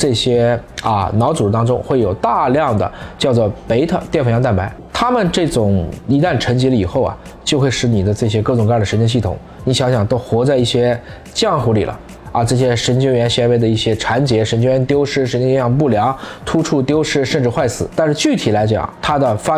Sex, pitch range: male, 105-140 Hz